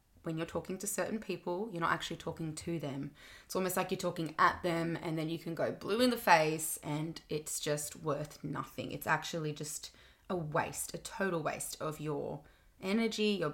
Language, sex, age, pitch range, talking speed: English, female, 20-39, 155-185 Hz, 200 wpm